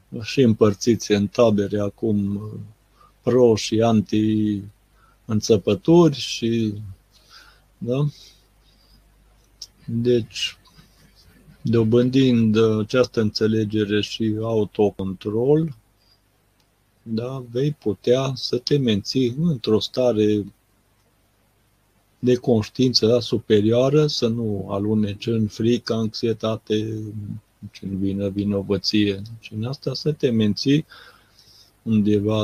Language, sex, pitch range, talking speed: Romanian, male, 105-120 Hz, 85 wpm